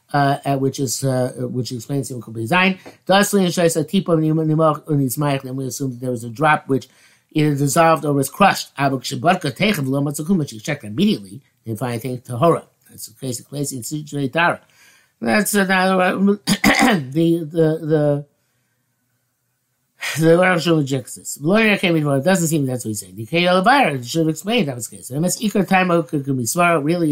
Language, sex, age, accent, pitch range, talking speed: English, male, 60-79, American, 130-170 Hz, 205 wpm